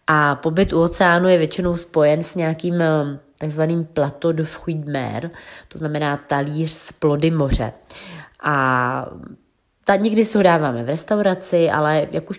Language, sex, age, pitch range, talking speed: Czech, female, 30-49, 140-170 Hz, 145 wpm